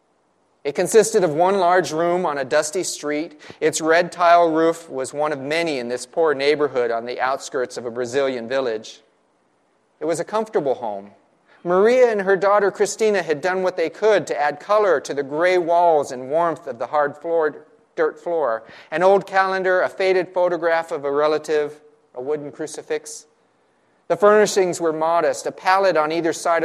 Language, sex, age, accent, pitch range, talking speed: English, male, 40-59, American, 145-185 Hz, 180 wpm